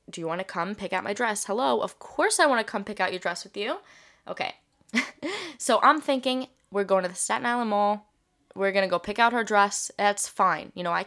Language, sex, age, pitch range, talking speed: English, female, 10-29, 190-260 Hz, 250 wpm